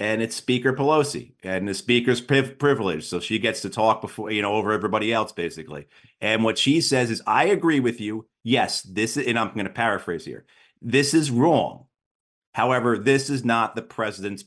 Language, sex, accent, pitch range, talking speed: English, male, American, 100-130 Hz, 195 wpm